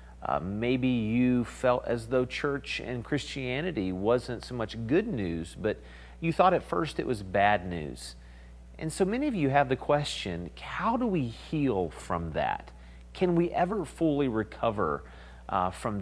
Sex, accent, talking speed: male, American, 165 wpm